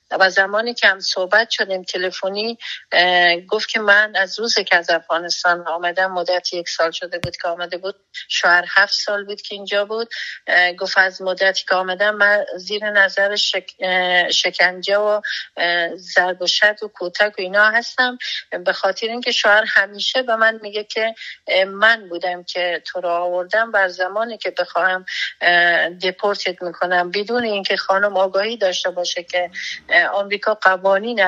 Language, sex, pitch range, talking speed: Persian, female, 180-210 Hz, 150 wpm